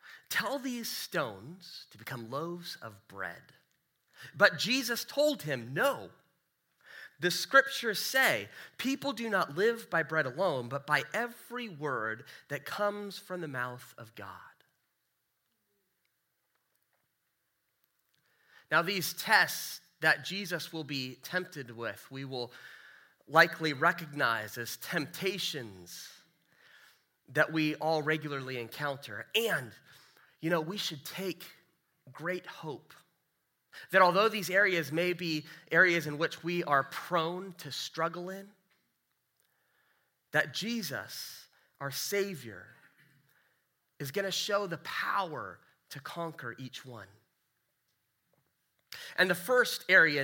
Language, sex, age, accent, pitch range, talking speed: English, male, 30-49, American, 135-190 Hz, 110 wpm